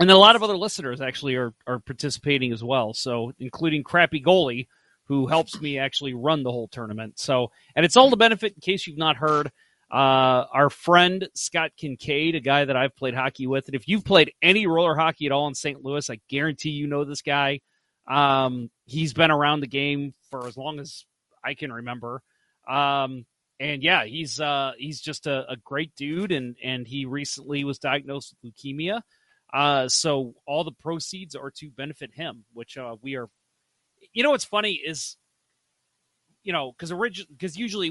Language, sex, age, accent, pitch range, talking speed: English, male, 30-49, American, 130-160 Hz, 190 wpm